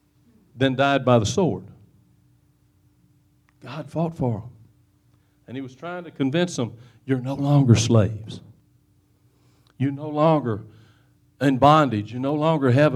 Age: 50-69